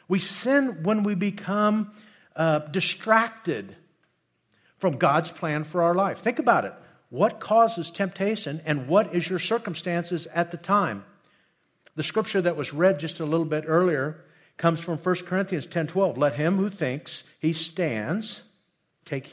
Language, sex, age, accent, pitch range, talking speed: English, male, 50-69, American, 145-195 Hz, 150 wpm